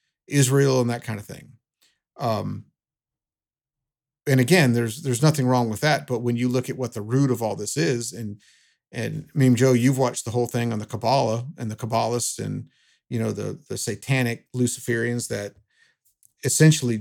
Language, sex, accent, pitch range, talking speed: English, male, American, 115-135 Hz, 185 wpm